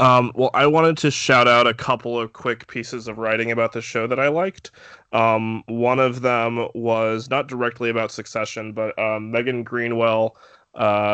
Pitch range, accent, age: 110-120 Hz, American, 20-39